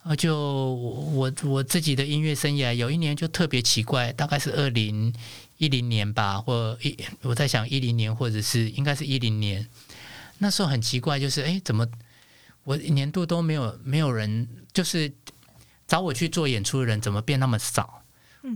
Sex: male